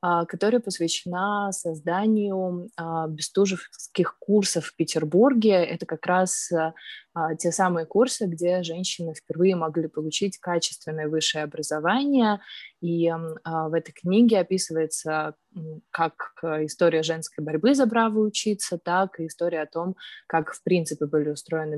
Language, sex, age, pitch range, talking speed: Russian, female, 20-39, 160-190 Hz, 125 wpm